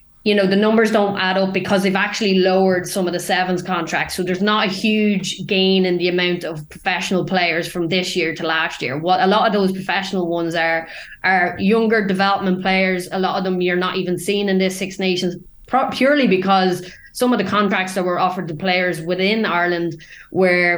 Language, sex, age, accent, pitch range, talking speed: English, female, 20-39, Irish, 175-195 Hz, 210 wpm